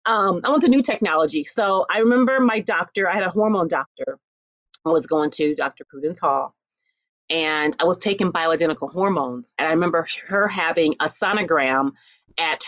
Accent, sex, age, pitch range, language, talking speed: American, female, 30-49, 165-220 Hz, English, 175 wpm